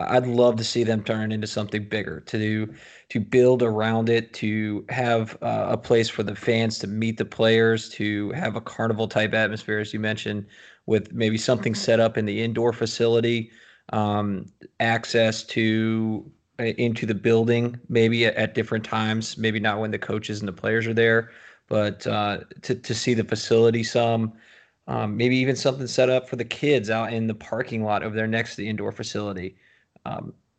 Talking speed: 190 wpm